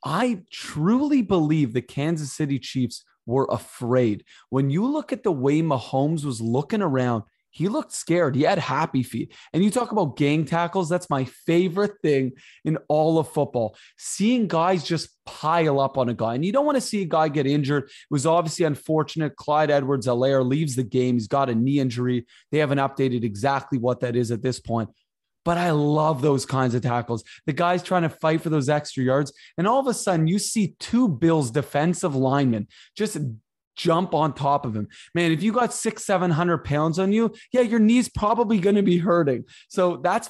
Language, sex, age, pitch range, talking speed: English, male, 20-39, 135-180 Hz, 200 wpm